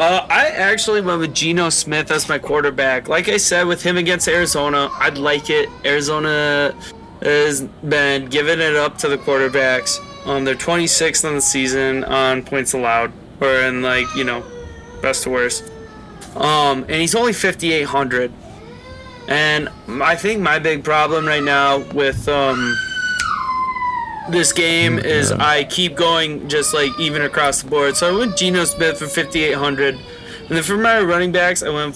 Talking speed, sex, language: 165 wpm, male, English